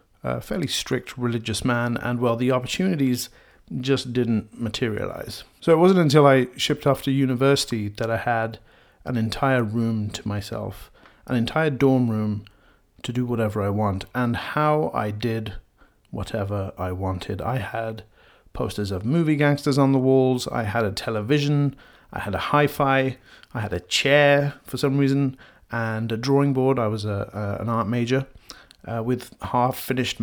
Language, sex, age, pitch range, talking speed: English, male, 30-49, 110-135 Hz, 165 wpm